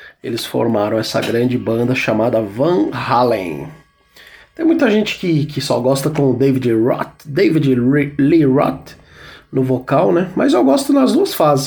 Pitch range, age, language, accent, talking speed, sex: 125-195 Hz, 20-39, Portuguese, Brazilian, 165 wpm, male